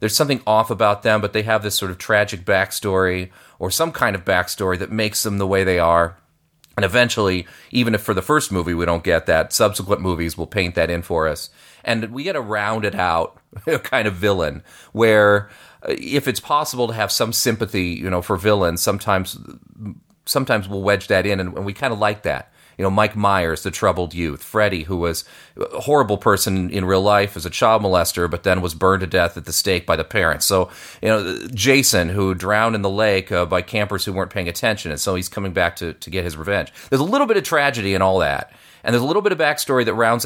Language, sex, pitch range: English, male, 90-110 Hz